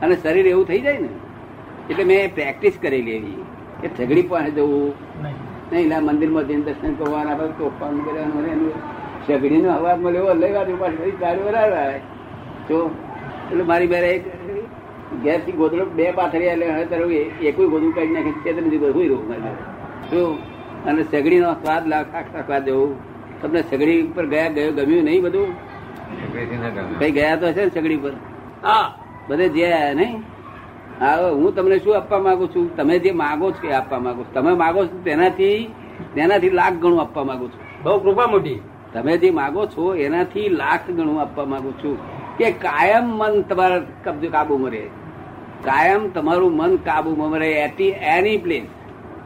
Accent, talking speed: native, 115 wpm